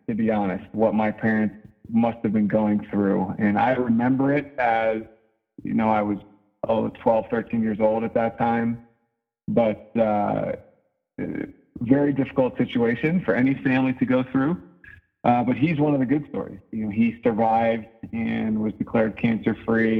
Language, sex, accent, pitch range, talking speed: English, male, American, 105-130 Hz, 165 wpm